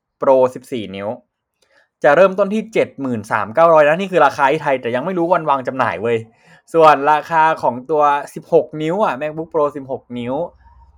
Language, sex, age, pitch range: Thai, male, 20-39, 130-185 Hz